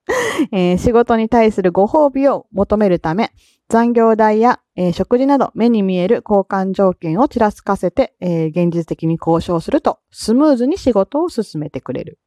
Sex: female